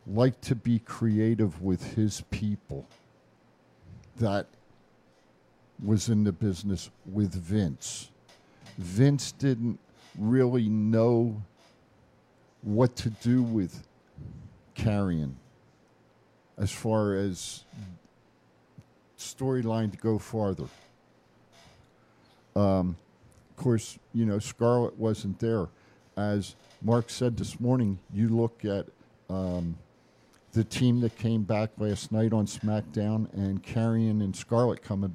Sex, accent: male, American